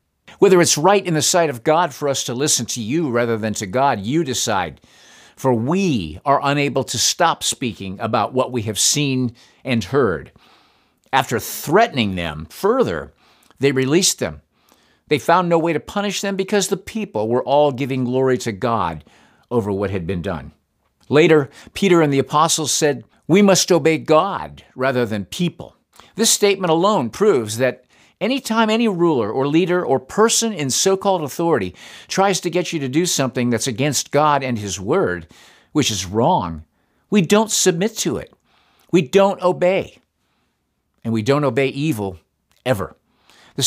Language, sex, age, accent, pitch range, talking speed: English, male, 50-69, American, 115-170 Hz, 165 wpm